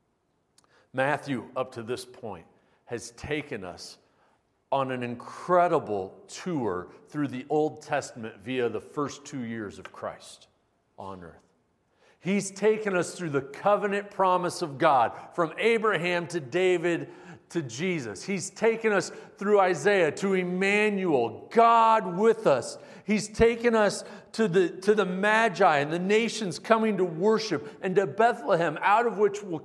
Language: English